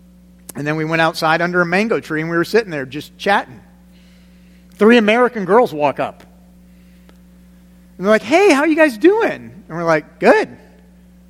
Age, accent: 40-59, American